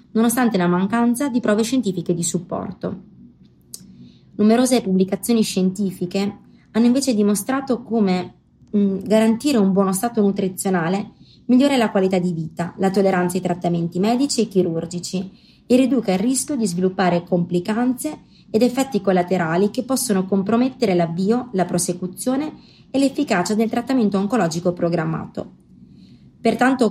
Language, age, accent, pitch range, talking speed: Italian, 20-39, native, 180-230 Hz, 125 wpm